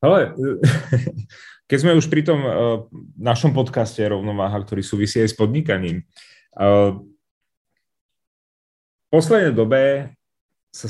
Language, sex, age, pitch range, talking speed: Czech, male, 30-49, 105-130 Hz, 100 wpm